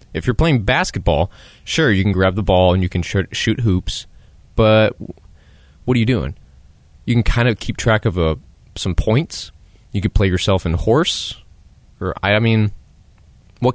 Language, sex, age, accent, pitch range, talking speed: English, male, 20-39, American, 90-120 Hz, 170 wpm